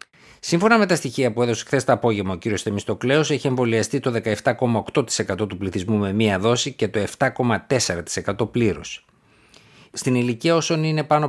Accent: native